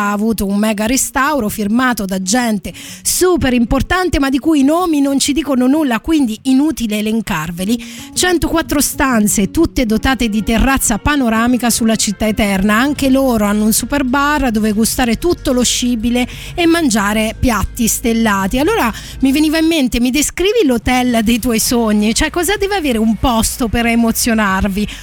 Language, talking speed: Italian, 160 wpm